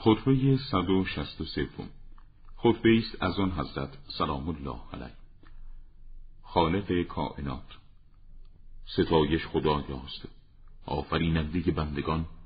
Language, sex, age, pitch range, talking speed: Persian, male, 50-69, 75-90 Hz, 75 wpm